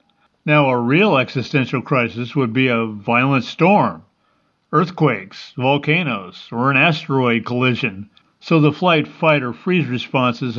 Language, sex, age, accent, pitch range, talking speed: English, male, 50-69, American, 125-155 Hz, 130 wpm